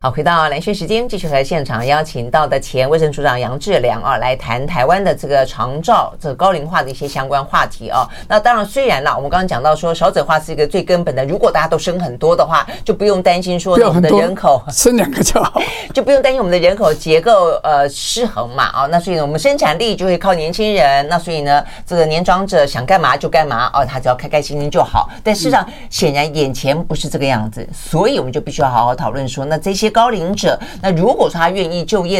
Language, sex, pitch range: Chinese, female, 140-190 Hz